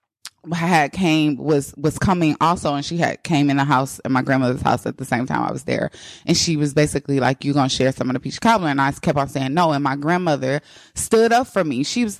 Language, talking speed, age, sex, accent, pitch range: English, 260 wpm, 20-39, female, American, 155-220 Hz